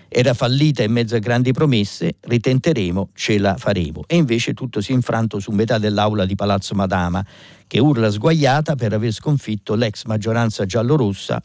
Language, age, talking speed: Italian, 50-69, 170 wpm